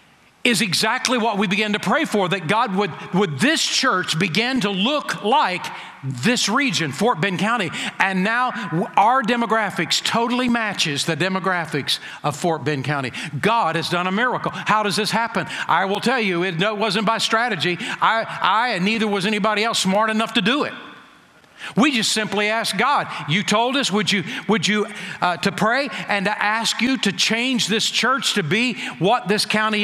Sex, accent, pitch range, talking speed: male, American, 195-235 Hz, 185 wpm